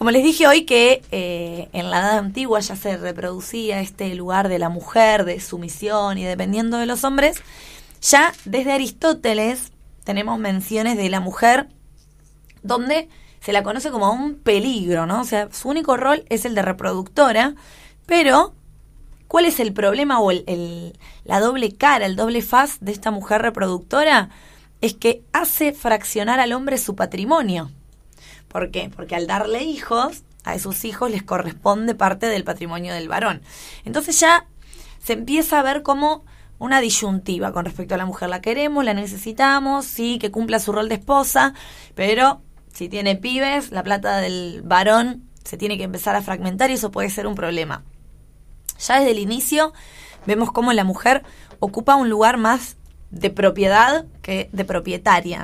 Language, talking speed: Spanish, 165 wpm